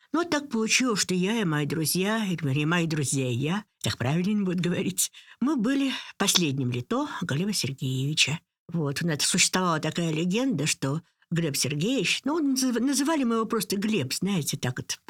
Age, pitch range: 60-79, 145-220 Hz